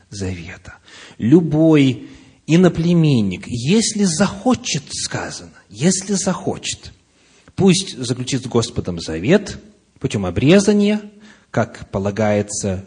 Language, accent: Russian, native